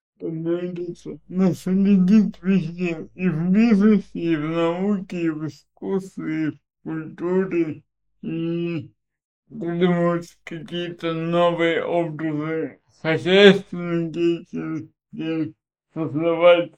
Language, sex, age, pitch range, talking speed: Russian, male, 60-79, 160-190 Hz, 80 wpm